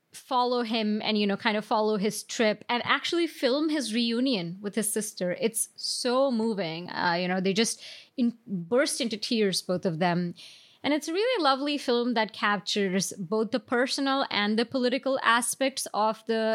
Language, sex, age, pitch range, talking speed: English, female, 20-39, 195-255 Hz, 180 wpm